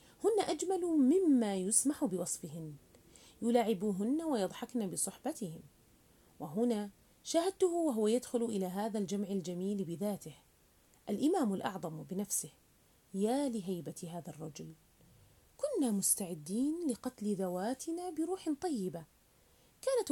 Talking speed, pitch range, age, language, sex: 90 wpm, 185-270 Hz, 30-49, Arabic, female